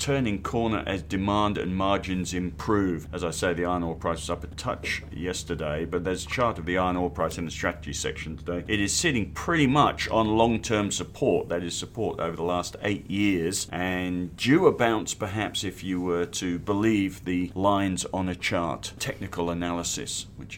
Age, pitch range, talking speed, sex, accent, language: 40-59, 90-105 Hz, 195 wpm, male, British, English